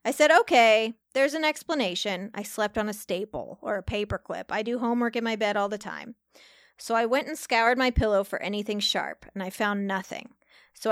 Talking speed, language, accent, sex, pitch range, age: 210 wpm, English, American, female, 200-250 Hz, 20-39